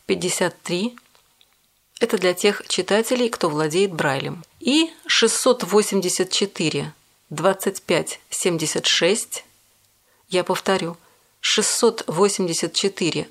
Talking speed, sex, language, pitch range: 75 wpm, female, Russian, 170-225 Hz